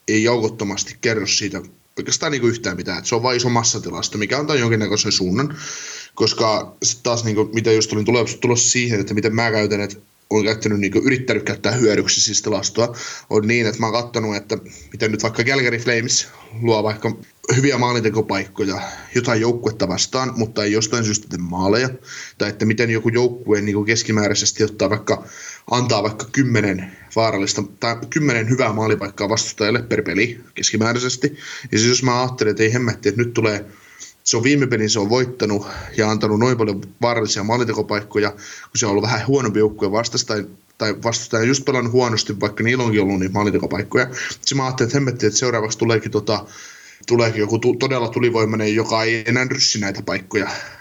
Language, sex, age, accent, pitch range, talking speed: Finnish, male, 20-39, native, 105-120 Hz, 175 wpm